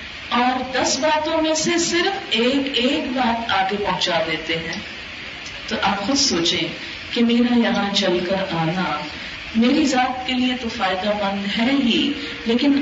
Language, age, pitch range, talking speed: Urdu, 40-59, 200-275 Hz, 155 wpm